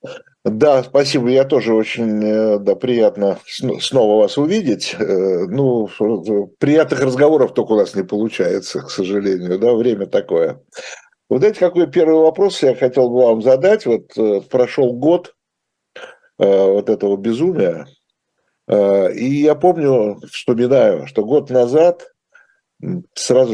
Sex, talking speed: male, 120 wpm